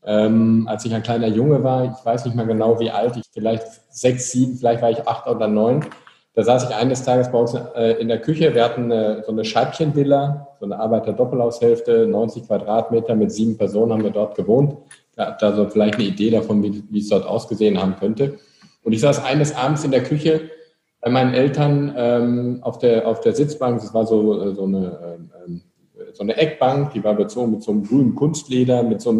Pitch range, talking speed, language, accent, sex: 115-140 Hz, 210 wpm, German, German, male